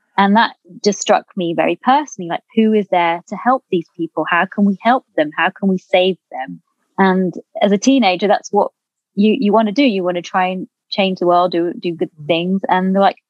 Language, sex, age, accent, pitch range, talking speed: English, female, 20-39, British, 175-210 Hz, 230 wpm